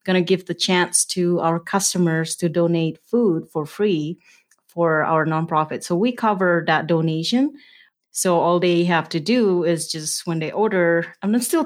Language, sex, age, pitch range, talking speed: English, female, 30-49, 160-190 Hz, 175 wpm